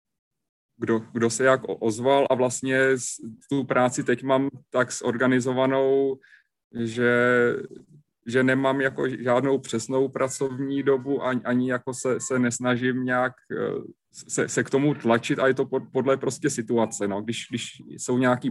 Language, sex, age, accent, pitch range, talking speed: Czech, male, 30-49, native, 120-130 Hz, 145 wpm